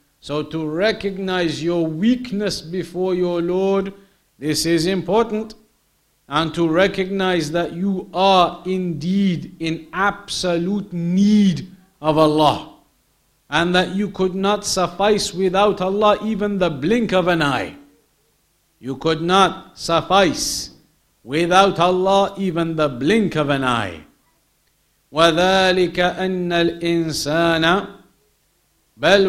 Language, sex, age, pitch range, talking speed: English, male, 50-69, 165-195 Hz, 105 wpm